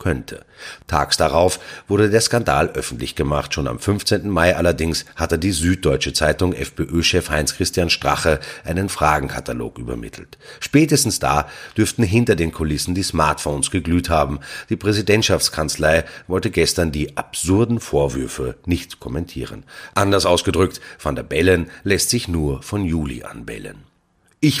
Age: 30-49